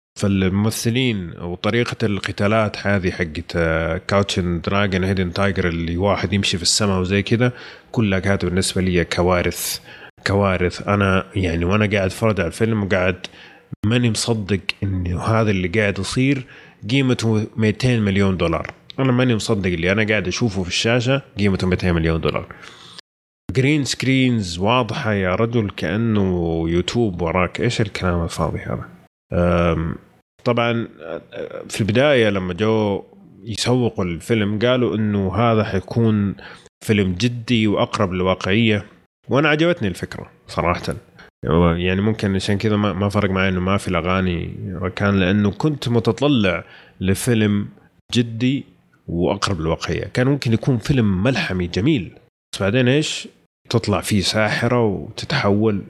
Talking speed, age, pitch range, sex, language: 125 wpm, 30-49, 90-115 Hz, male, Arabic